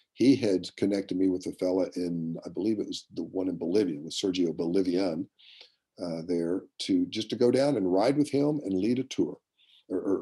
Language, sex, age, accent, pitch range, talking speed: English, male, 50-69, American, 90-125 Hz, 210 wpm